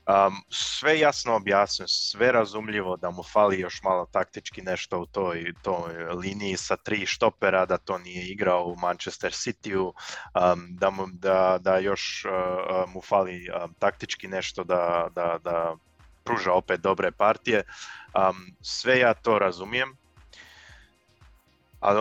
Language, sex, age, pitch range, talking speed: Croatian, male, 20-39, 90-110 Hz, 140 wpm